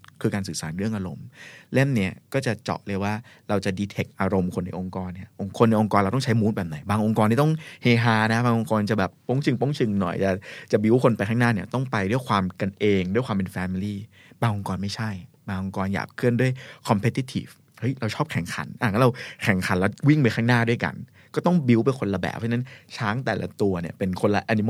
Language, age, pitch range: Thai, 20-39, 95-120 Hz